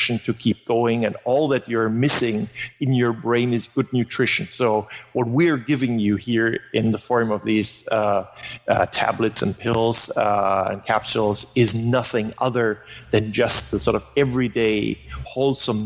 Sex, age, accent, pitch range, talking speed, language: male, 50-69, German, 110-125 Hz, 165 wpm, English